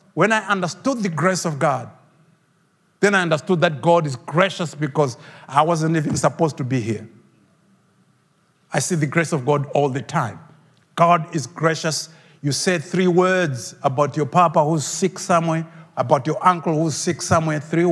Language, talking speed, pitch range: English, 170 wpm, 160-210 Hz